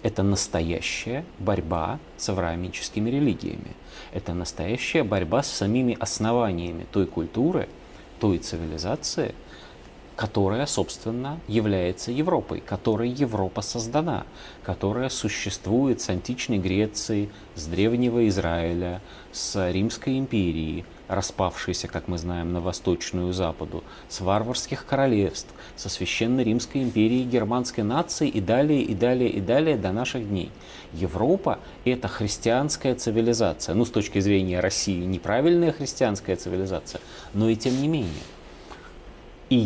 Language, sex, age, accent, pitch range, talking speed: Russian, male, 30-49, native, 90-120 Hz, 115 wpm